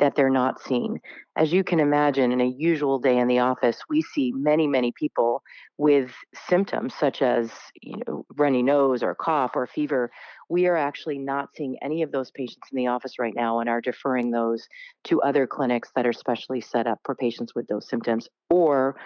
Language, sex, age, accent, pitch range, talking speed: English, female, 40-59, American, 120-145 Hz, 195 wpm